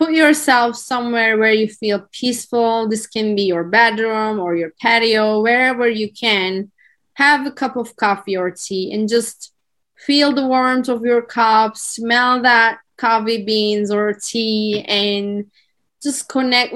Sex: female